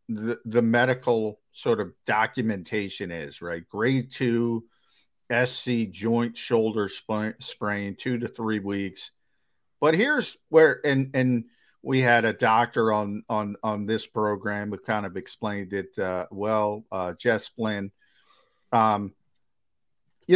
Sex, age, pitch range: male, 50-69, 110-150 Hz